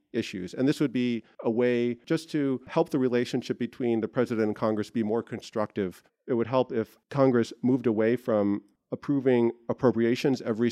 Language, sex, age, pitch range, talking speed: English, male, 40-59, 105-120 Hz, 175 wpm